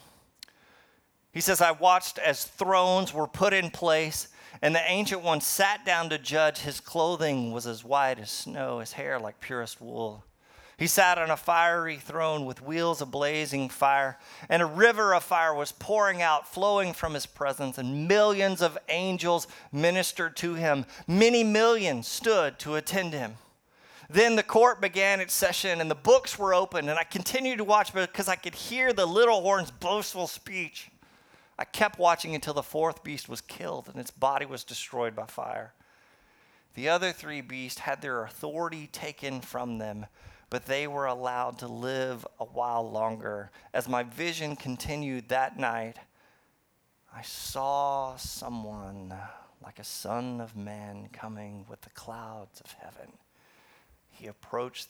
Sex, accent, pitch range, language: male, American, 125-180 Hz, English